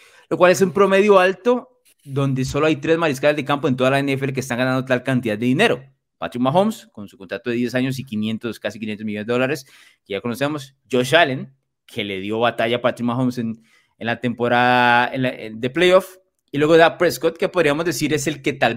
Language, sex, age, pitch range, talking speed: Spanish, male, 20-39, 125-170 Hz, 225 wpm